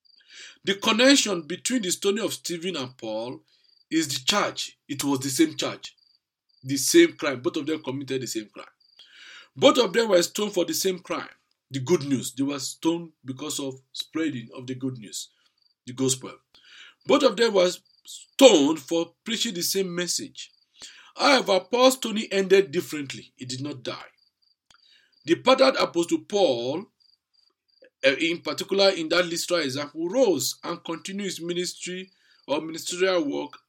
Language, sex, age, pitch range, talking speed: English, male, 50-69, 140-200 Hz, 160 wpm